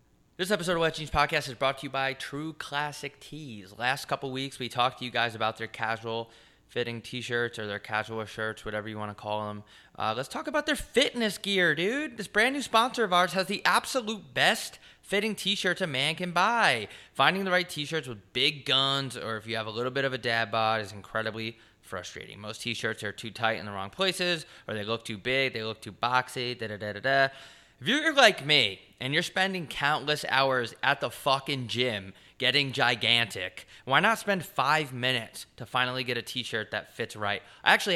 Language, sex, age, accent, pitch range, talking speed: English, male, 20-39, American, 110-155 Hz, 205 wpm